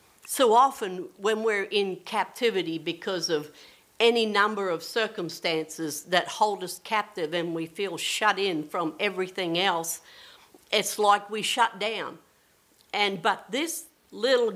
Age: 50-69